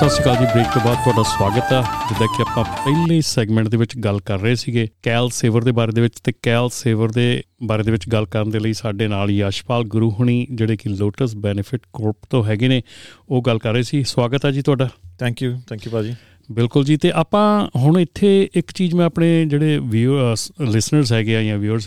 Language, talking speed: Punjabi, 220 wpm